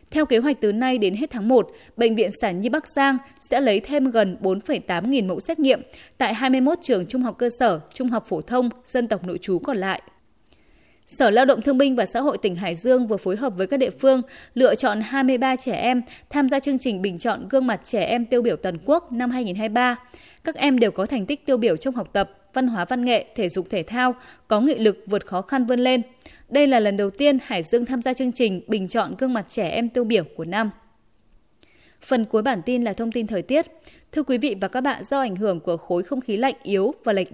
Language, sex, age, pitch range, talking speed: Vietnamese, female, 10-29, 210-270 Hz, 245 wpm